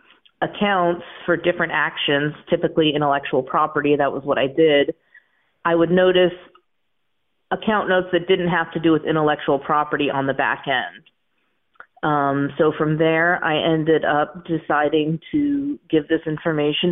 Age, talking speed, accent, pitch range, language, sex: 40-59, 145 wpm, American, 150-180 Hz, English, female